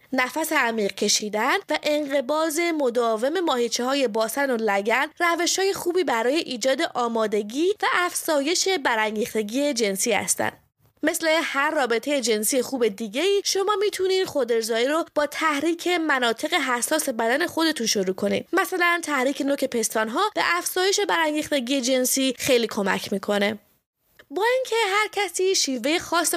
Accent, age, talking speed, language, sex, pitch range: Canadian, 20-39, 135 wpm, English, female, 230-335 Hz